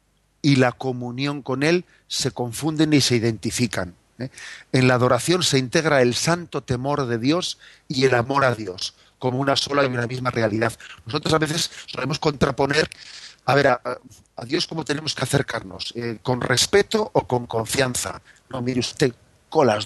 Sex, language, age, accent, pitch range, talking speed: male, Spanish, 50-69, Spanish, 120-150 Hz, 165 wpm